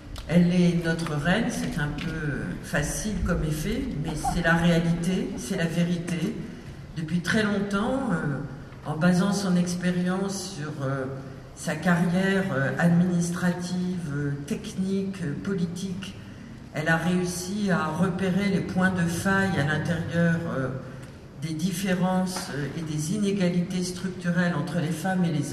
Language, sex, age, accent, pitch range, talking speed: French, female, 50-69, French, 165-195 Hz, 140 wpm